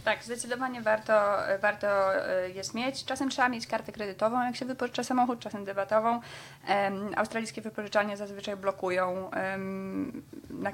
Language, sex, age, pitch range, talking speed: Polish, female, 20-39, 185-220 Hz, 135 wpm